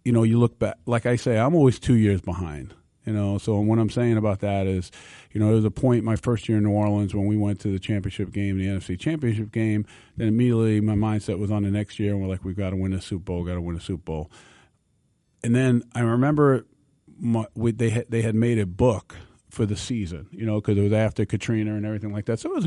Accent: American